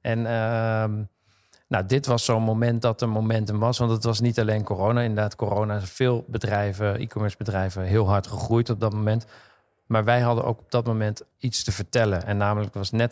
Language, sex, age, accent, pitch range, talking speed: Dutch, male, 40-59, Dutch, 105-120 Hz, 200 wpm